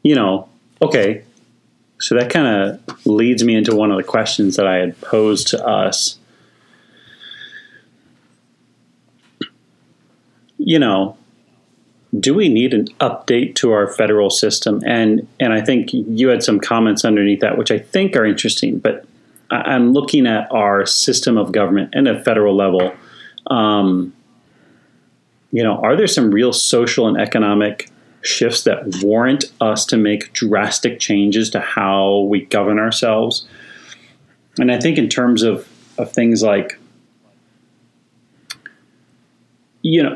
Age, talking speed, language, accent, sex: 30-49, 135 wpm, English, American, male